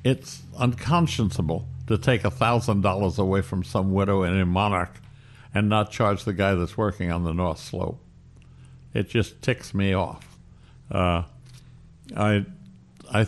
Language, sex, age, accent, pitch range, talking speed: English, male, 60-79, American, 95-120 Hz, 140 wpm